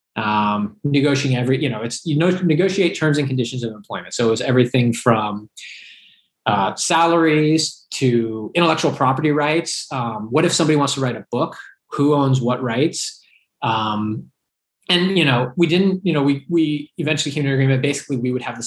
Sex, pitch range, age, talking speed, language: male, 120-160 Hz, 20-39, 185 wpm, English